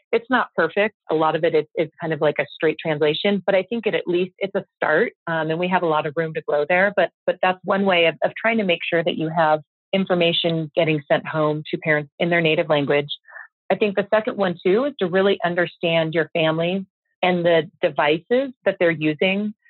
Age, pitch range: 40-59, 160-200 Hz